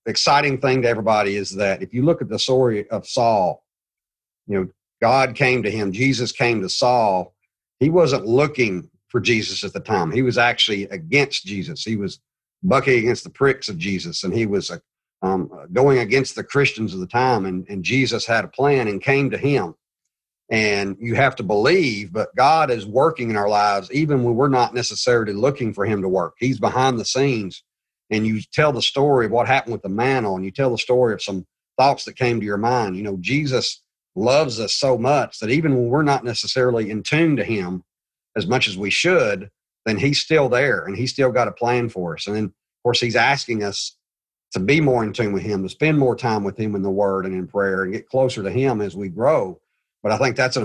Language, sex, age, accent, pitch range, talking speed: English, male, 50-69, American, 100-130 Hz, 225 wpm